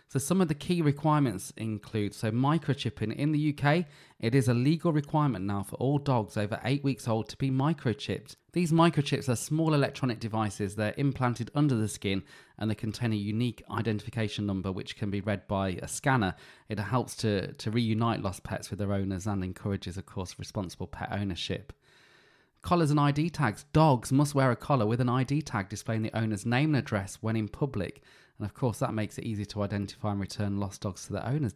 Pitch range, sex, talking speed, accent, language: 105-135 Hz, male, 205 wpm, British, English